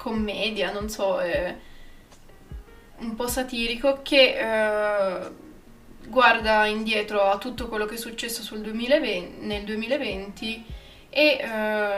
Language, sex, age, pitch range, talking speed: Italian, female, 20-39, 205-225 Hz, 120 wpm